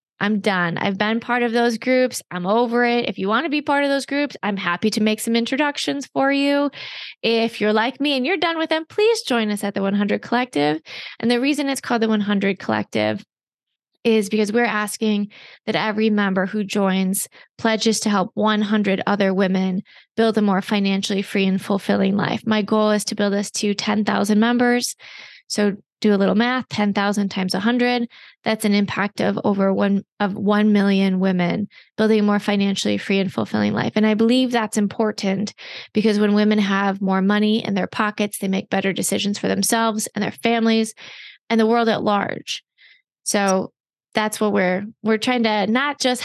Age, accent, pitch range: 20-39, American, 200-235 Hz